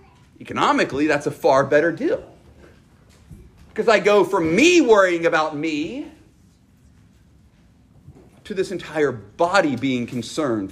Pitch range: 150-200 Hz